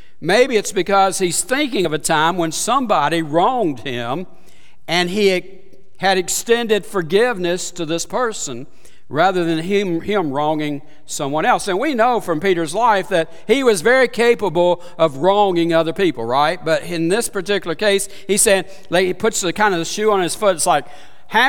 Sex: male